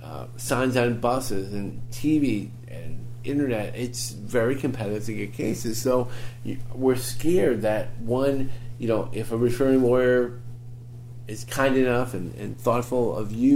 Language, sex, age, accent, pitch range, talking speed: English, male, 40-59, American, 115-135 Hz, 150 wpm